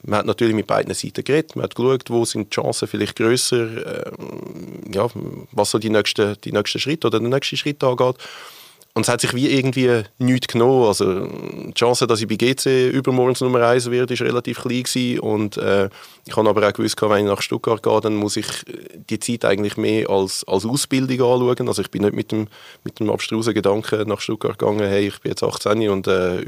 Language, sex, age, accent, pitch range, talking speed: German, male, 30-49, Austrian, 105-120 Hz, 220 wpm